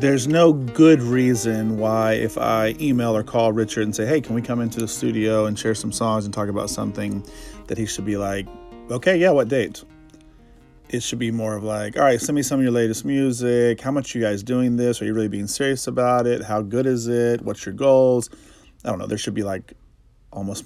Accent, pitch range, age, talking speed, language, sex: American, 105-125 Hz, 30-49, 235 wpm, English, male